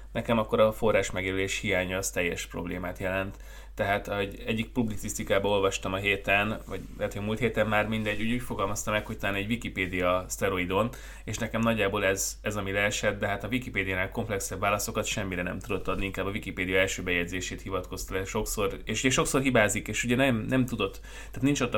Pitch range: 95-115 Hz